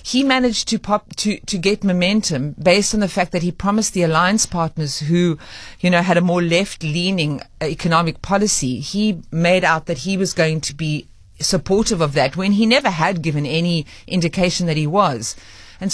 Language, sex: English, female